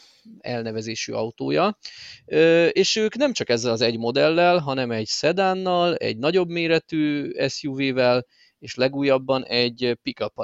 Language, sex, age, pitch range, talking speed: Hungarian, male, 30-49, 120-155 Hz, 120 wpm